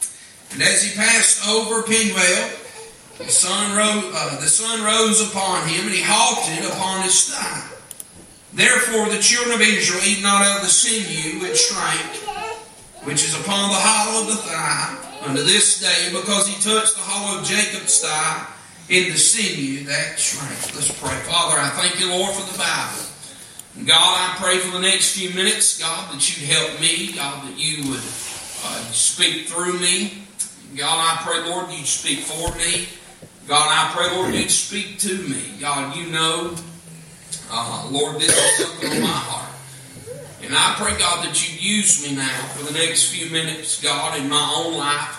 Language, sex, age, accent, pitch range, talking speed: English, male, 40-59, American, 155-200 Hz, 180 wpm